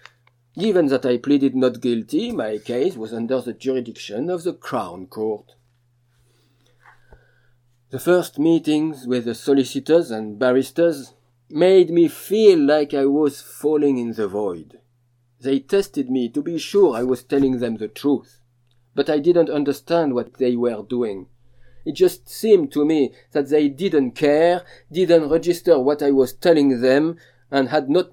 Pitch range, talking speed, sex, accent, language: 120-150 Hz, 155 wpm, male, French, English